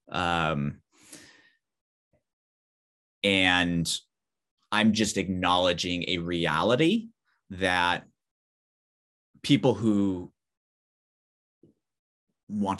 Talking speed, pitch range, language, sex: 50 wpm, 90-110 Hz, English, male